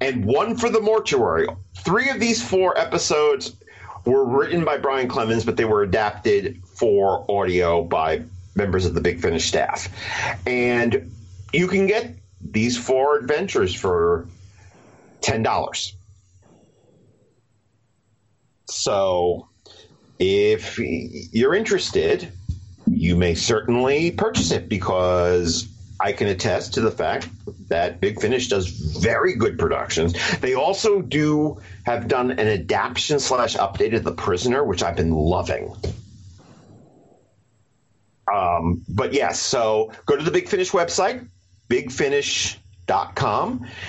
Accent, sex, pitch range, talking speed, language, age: American, male, 95-150 Hz, 120 wpm, English, 40-59